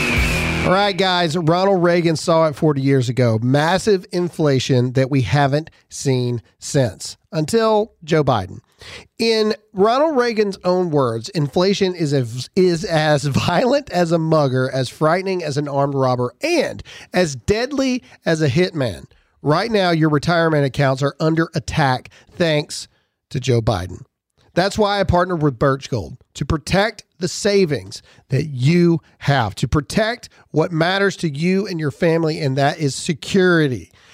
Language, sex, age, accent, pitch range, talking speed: English, male, 40-59, American, 135-180 Hz, 145 wpm